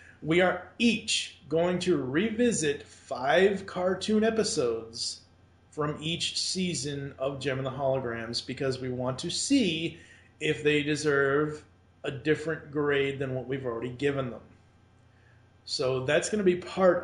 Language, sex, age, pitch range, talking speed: English, male, 40-59, 130-165 Hz, 140 wpm